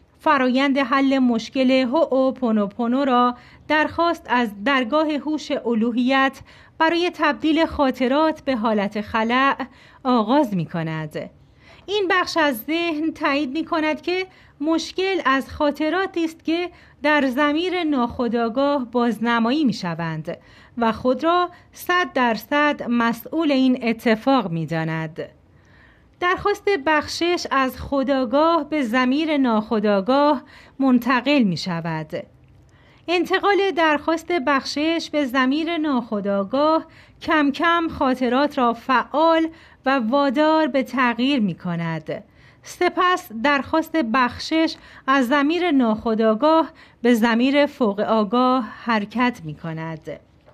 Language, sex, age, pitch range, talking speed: Persian, female, 30-49, 235-315 Hz, 110 wpm